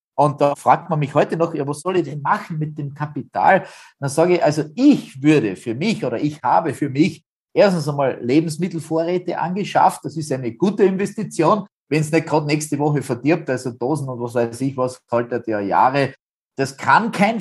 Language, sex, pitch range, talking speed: German, male, 135-165 Hz, 200 wpm